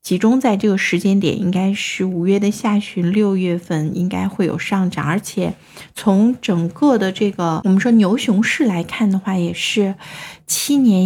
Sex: female